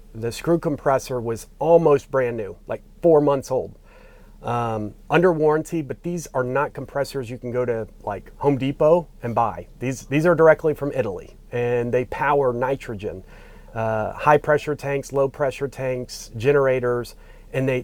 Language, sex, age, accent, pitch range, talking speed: English, male, 40-59, American, 115-145 Hz, 160 wpm